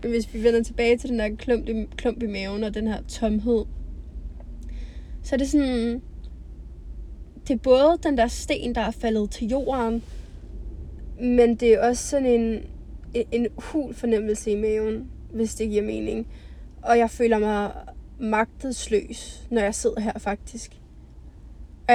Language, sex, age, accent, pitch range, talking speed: Danish, female, 20-39, native, 200-235 Hz, 160 wpm